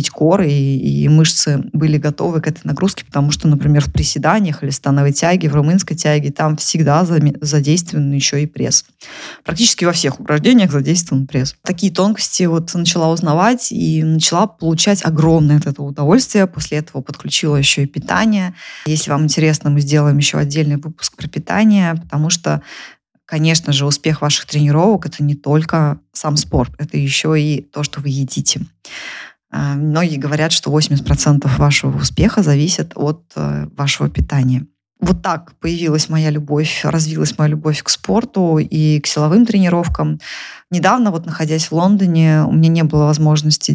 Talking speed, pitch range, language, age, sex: 160 wpm, 145-170 Hz, Russian, 20-39, female